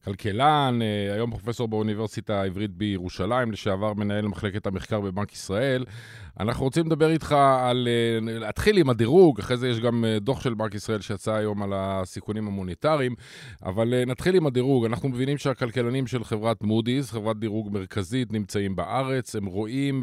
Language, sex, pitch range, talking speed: Hebrew, male, 105-125 Hz, 150 wpm